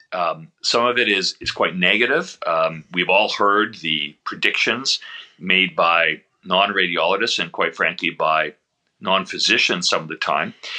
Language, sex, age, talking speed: English, male, 40-59, 155 wpm